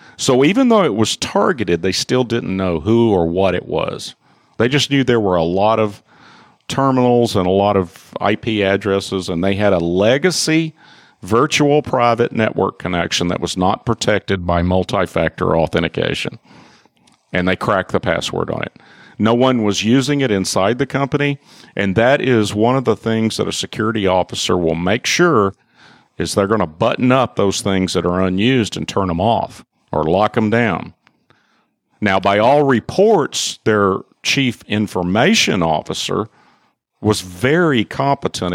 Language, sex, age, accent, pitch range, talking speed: English, male, 50-69, American, 95-125 Hz, 160 wpm